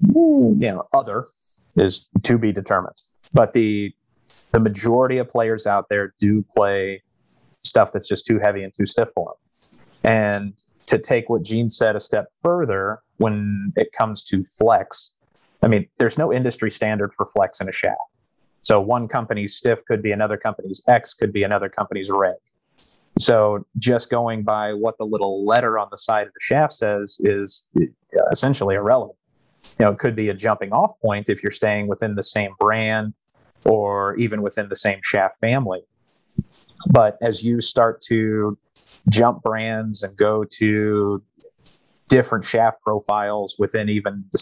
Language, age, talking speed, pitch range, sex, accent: English, 30-49, 165 wpm, 100-115 Hz, male, American